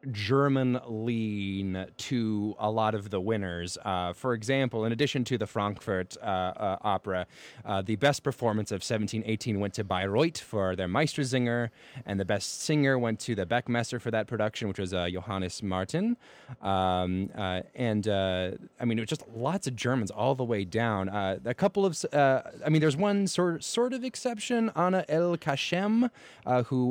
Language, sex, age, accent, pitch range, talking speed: English, male, 20-39, American, 100-140 Hz, 175 wpm